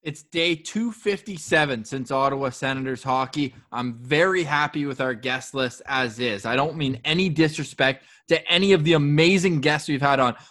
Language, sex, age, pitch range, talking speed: English, male, 20-39, 140-200 Hz, 170 wpm